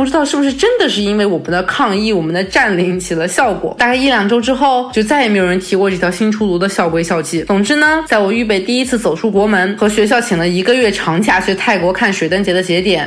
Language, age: Chinese, 20-39